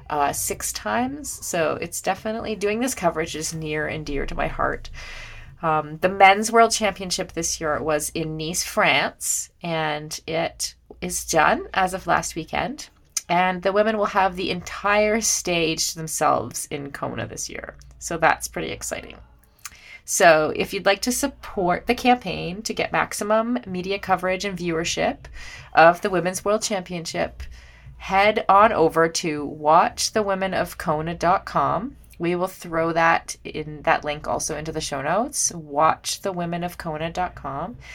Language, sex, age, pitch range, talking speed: English, female, 30-49, 155-205 Hz, 145 wpm